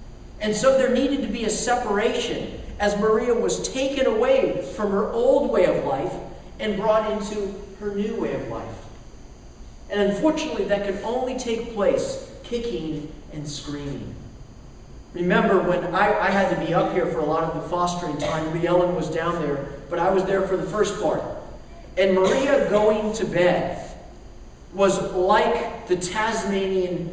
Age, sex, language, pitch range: 40-59, male, English, 175-240 Hz